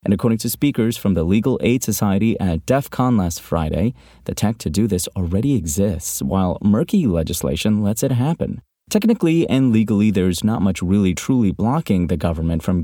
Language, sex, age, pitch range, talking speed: English, male, 30-49, 90-115 Hz, 180 wpm